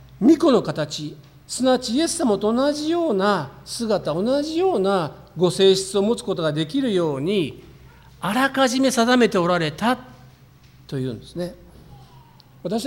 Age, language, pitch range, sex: 40-59, Japanese, 135-200 Hz, male